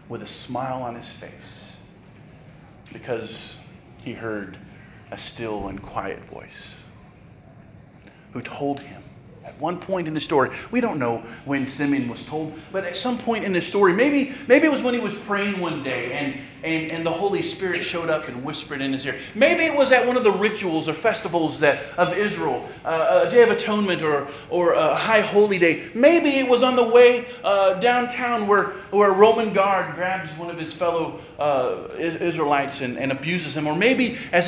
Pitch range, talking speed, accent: 135-195 Hz, 195 wpm, American